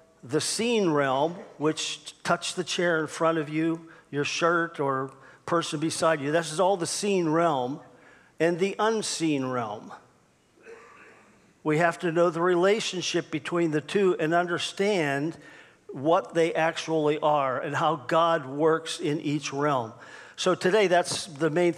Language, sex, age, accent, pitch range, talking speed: English, male, 50-69, American, 145-175 Hz, 150 wpm